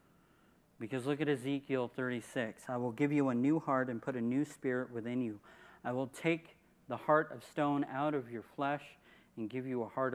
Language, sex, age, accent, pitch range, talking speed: English, male, 40-59, American, 115-140 Hz, 205 wpm